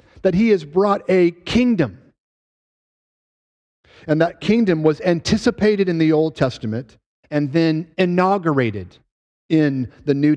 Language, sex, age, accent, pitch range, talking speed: English, male, 50-69, American, 130-185 Hz, 120 wpm